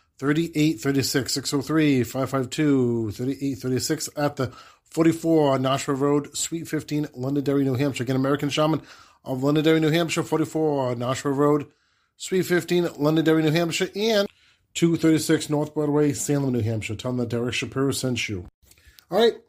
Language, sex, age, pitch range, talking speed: English, male, 30-49, 125-155 Hz, 140 wpm